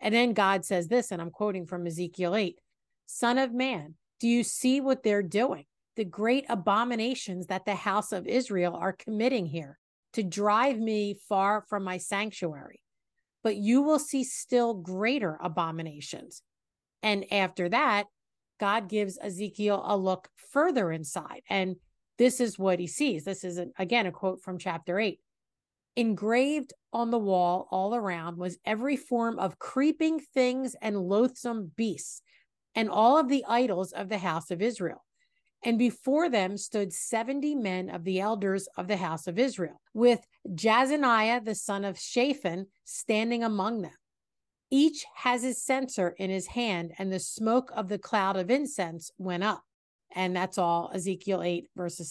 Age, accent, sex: 50-69, American, female